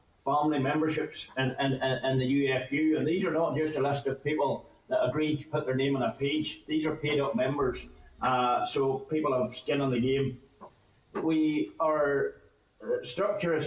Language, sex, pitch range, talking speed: English, male, 130-155 Hz, 175 wpm